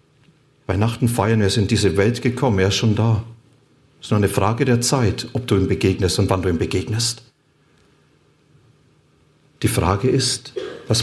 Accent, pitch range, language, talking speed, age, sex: German, 105-130 Hz, German, 180 wpm, 40-59, male